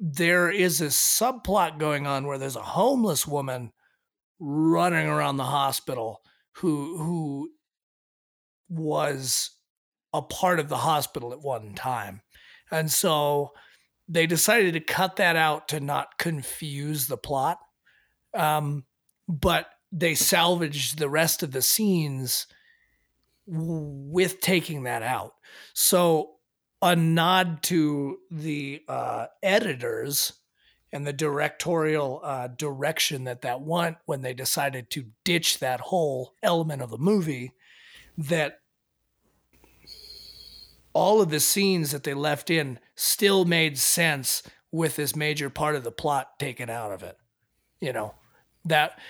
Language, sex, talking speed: English, male, 125 wpm